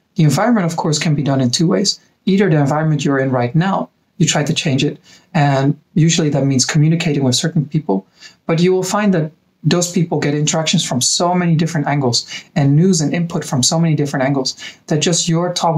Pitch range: 145-170 Hz